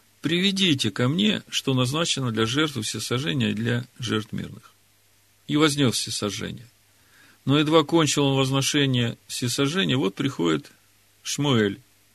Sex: male